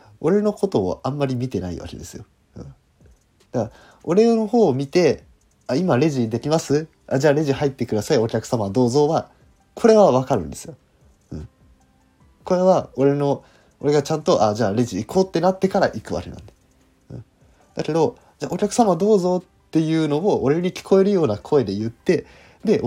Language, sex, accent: Japanese, male, native